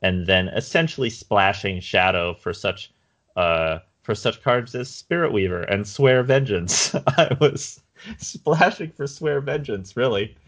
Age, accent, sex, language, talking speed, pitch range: 30-49, American, male, English, 135 wpm, 95-130 Hz